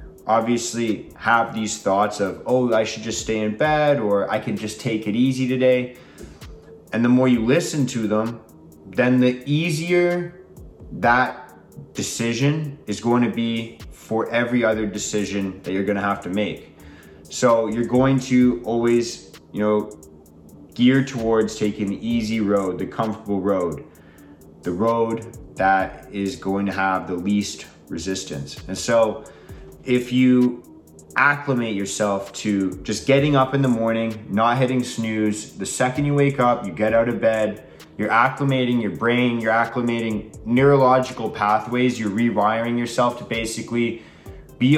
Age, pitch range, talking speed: 20-39, 105-125 Hz, 150 wpm